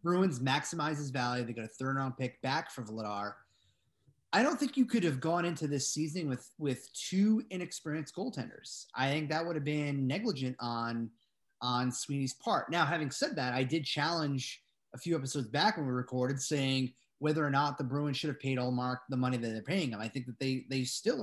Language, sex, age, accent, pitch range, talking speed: English, male, 30-49, American, 125-150 Hz, 210 wpm